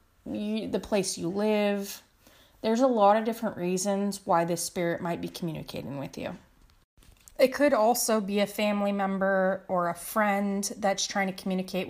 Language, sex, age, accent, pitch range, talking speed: English, female, 30-49, American, 180-220 Hz, 160 wpm